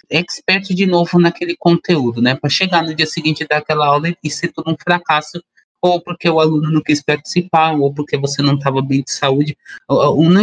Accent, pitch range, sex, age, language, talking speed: Brazilian, 135-175 Hz, male, 20-39, Portuguese, 215 wpm